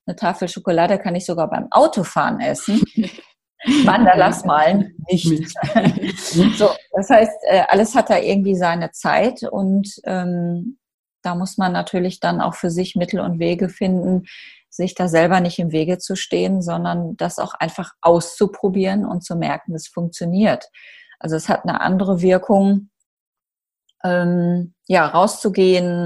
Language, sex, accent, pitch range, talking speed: German, female, German, 165-195 Hz, 145 wpm